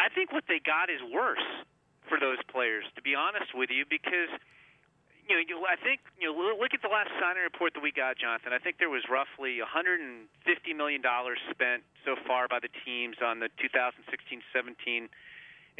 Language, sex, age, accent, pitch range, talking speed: English, male, 30-49, American, 130-170 Hz, 185 wpm